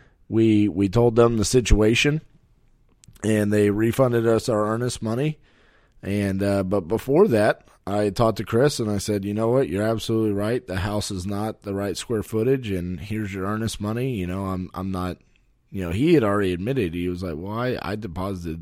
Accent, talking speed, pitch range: American, 200 wpm, 95-125 Hz